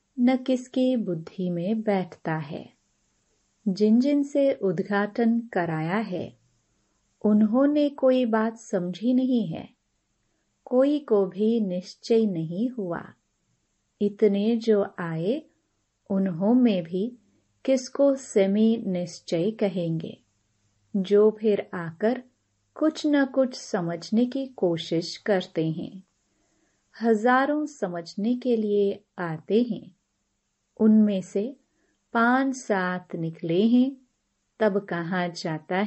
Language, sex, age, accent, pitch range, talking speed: Hindi, female, 30-49, native, 180-235 Hz, 100 wpm